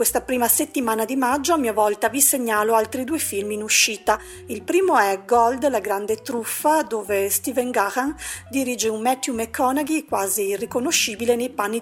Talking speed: 170 wpm